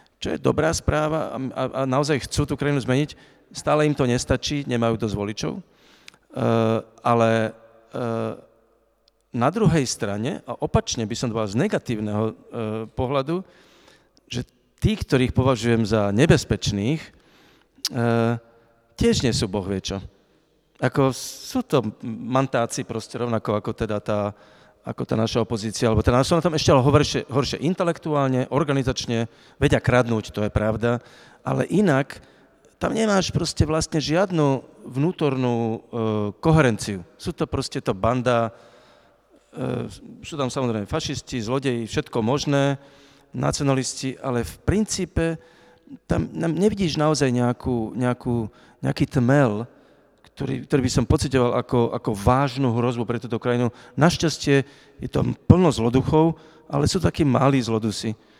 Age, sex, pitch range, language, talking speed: 40-59, male, 115-145 Hz, Slovak, 125 wpm